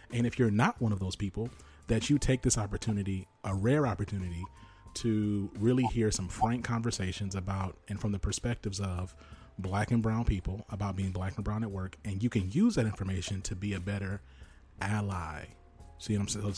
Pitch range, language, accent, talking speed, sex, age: 95-115 Hz, English, American, 190 wpm, male, 30-49